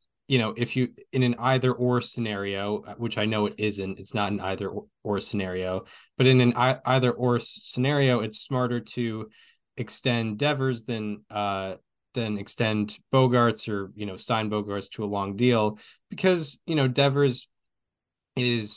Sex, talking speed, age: male, 160 wpm, 10-29